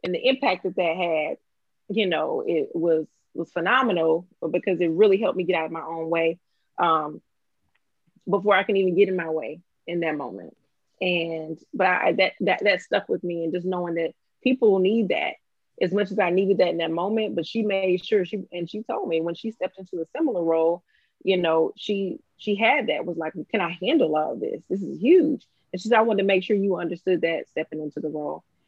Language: English